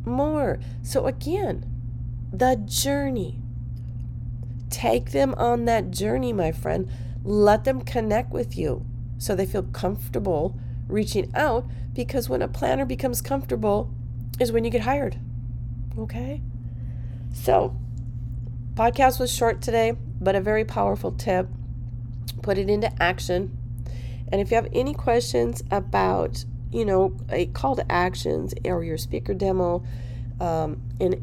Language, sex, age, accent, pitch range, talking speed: English, female, 40-59, American, 120-130 Hz, 130 wpm